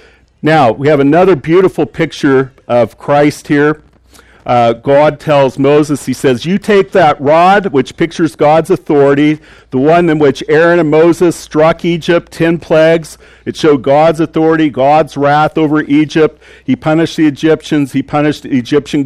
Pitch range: 130-165 Hz